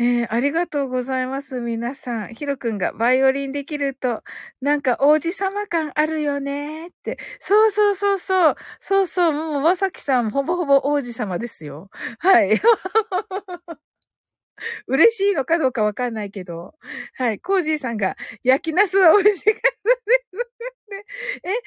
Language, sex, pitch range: Japanese, female, 265-410 Hz